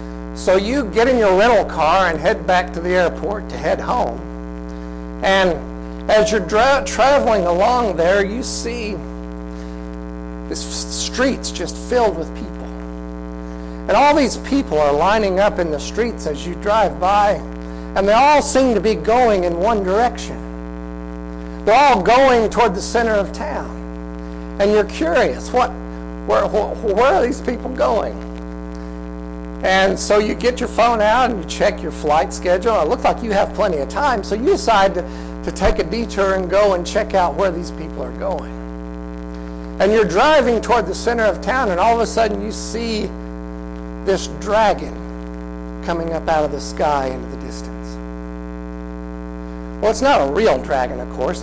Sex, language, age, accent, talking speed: male, English, 60-79, American, 170 wpm